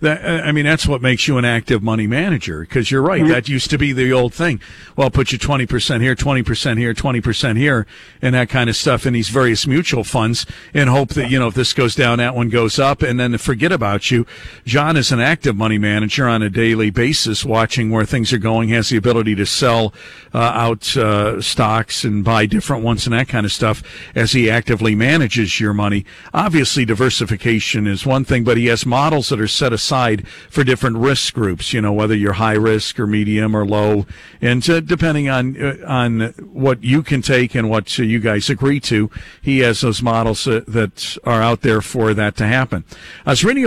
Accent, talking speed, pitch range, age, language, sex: American, 215 wpm, 110-140 Hz, 50-69, English, male